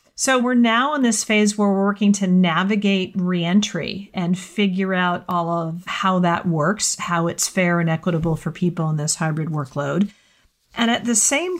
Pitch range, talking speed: 175-205 Hz, 180 wpm